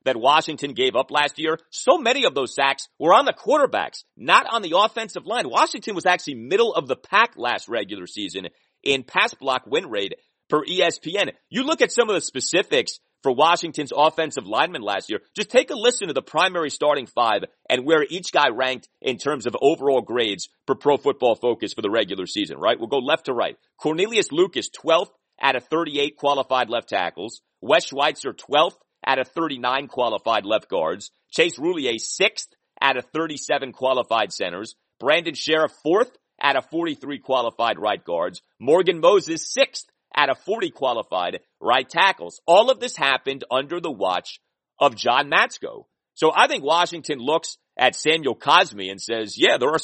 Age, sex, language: 40-59, male, English